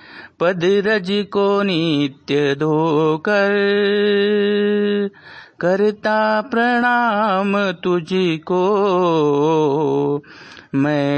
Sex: male